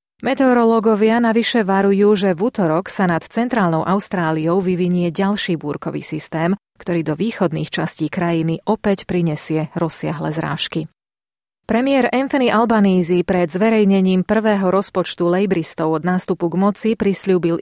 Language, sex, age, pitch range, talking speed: Slovak, female, 30-49, 170-200 Hz, 125 wpm